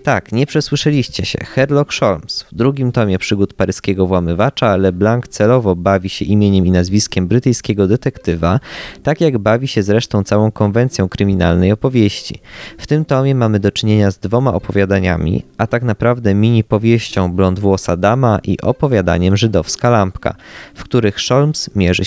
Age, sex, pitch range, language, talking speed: 20-39, male, 95-120 Hz, Polish, 150 wpm